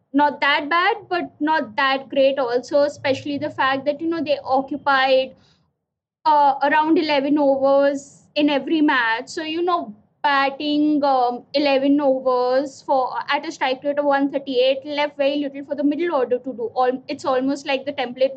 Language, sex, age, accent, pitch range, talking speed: English, female, 20-39, Indian, 265-300 Hz, 165 wpm